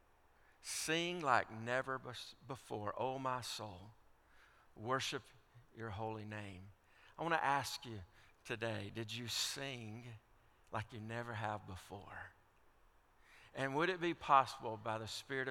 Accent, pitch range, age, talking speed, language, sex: American, 110-130 Hz, 50-69, 130 wpm, English, male